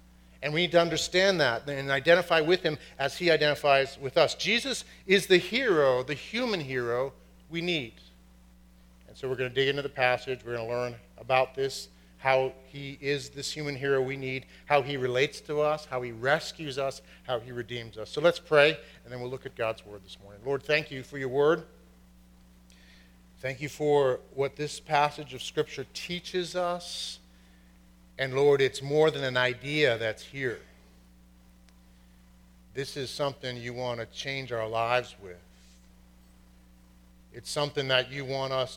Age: 50-69